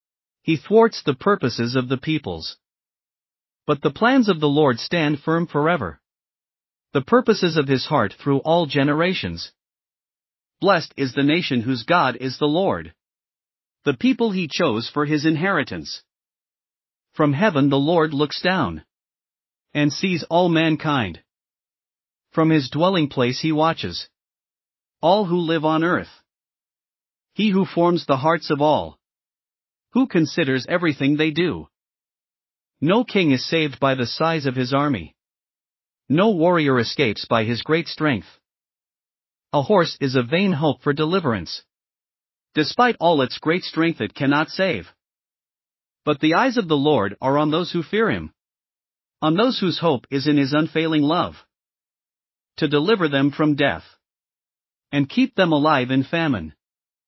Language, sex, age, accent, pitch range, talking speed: English, male, 40-59, American, 135-170 Hz, 145 wpm